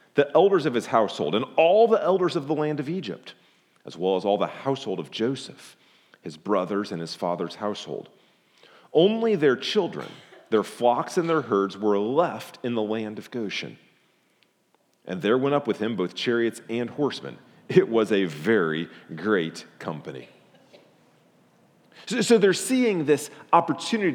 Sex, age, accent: male, 40-59, American